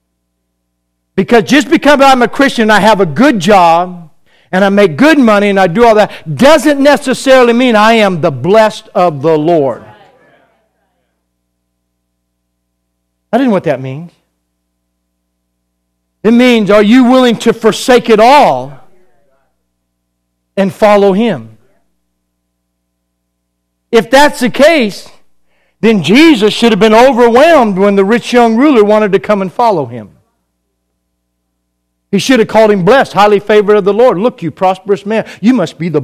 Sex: male